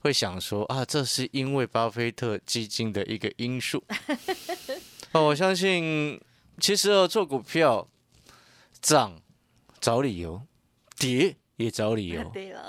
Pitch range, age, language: 115-185 Hz, 20-39, Chinese